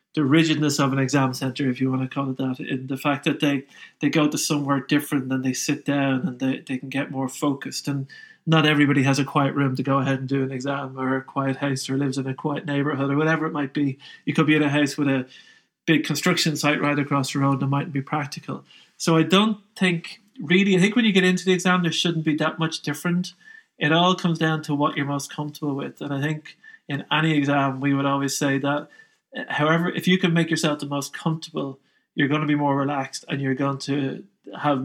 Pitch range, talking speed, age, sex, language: 140-160 Hz, 245 wpm, 30-49, male, English